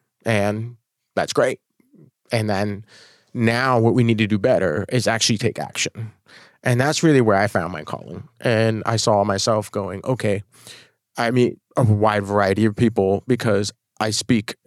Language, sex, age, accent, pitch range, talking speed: English, male, 30-49, American, 105-120 Hz, 165 wpm